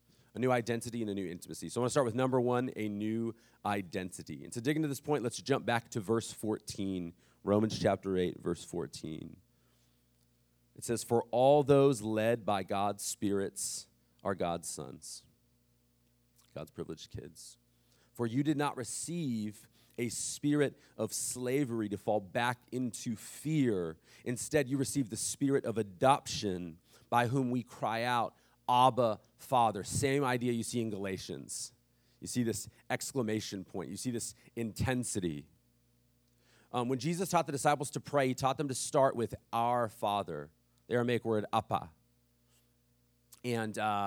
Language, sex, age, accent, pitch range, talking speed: English, male, 40-59, American, 100-130 Hz, 155 wpm